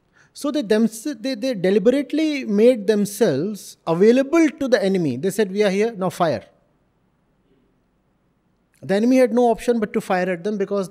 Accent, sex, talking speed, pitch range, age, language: Indian, male, 165 wpm, 170-235 Hz, 30-49, English